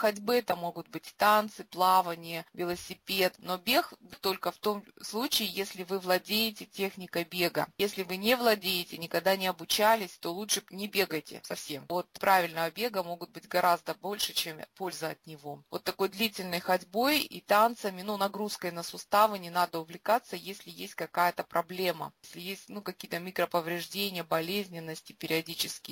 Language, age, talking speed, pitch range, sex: Russian, 20-39, 150 wpm, 170-205 Hz, female